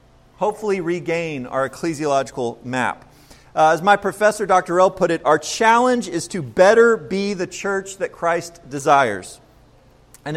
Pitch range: 165-220 Hz